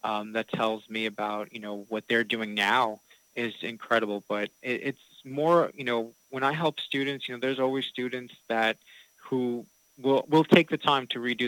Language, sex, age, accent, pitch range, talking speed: English, male, 20-39, American, 115-130 Hz, 190 wpm